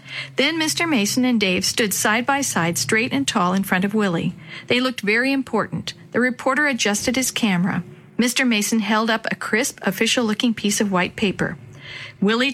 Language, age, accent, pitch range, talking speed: English, 50-69, American, 195-250 Hz, 175 wpm